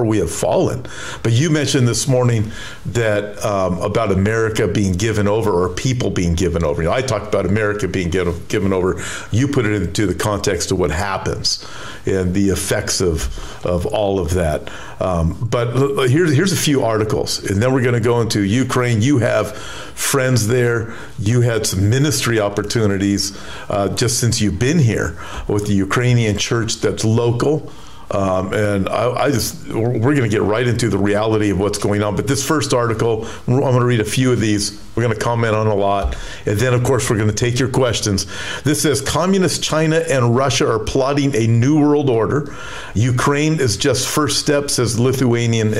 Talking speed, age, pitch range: 190 wpm, 50-69, 105-130 Hz